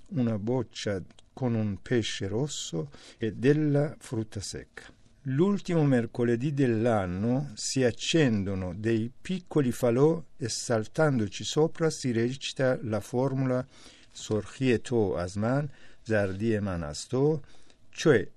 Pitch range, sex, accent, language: 110-145 Hz, male, native, Italian